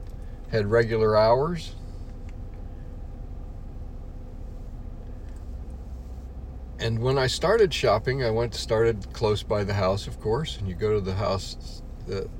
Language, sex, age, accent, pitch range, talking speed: English, male, 50-69, American, 80-115 Hz, 115 wpm